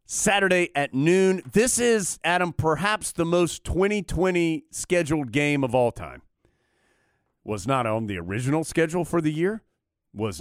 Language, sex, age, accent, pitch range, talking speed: English, male, 40-59, American, 115-175 Hz, 145 wpm